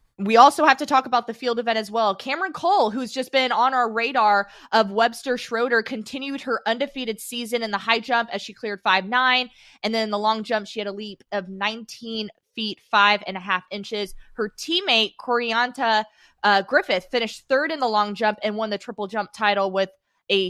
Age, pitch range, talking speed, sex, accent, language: 20-39, 205-255 Hz, 210 wpm, female, American, English